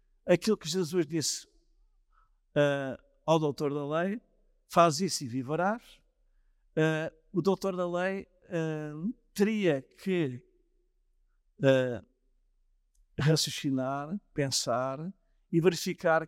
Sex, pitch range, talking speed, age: male, 155-210 Hz, 95 wpm, 50-69